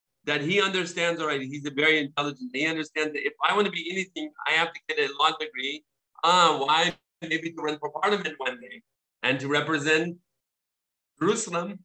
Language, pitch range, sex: English, 135-170 Hz, male